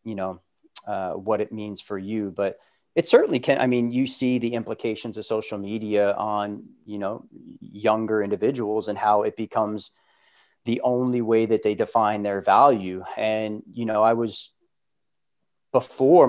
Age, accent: 30-49, American